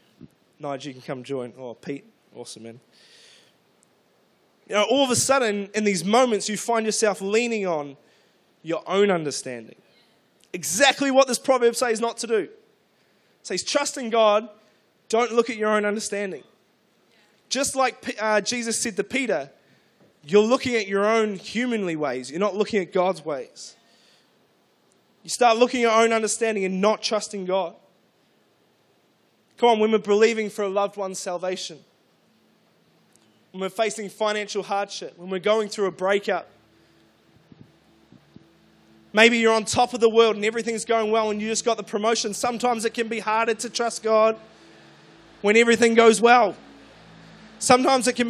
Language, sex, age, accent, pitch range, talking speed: English, male, 20-39, Australian, 200-235 Hz, 160 wpm